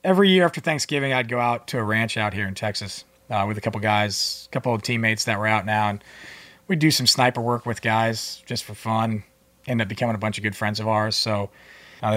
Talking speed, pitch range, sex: 250 wpm, 105-125 Hz, male